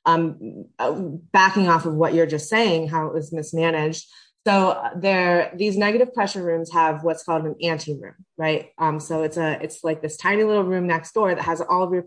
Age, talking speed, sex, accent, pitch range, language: 20-39, 205 wpm, female, American, 160-195 Hz, English